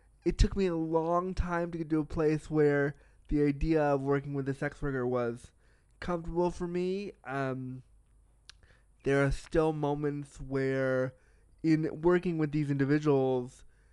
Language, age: English, 20-39